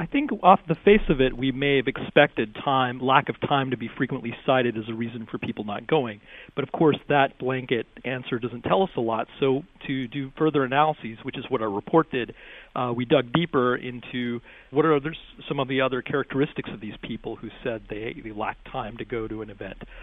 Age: 40-59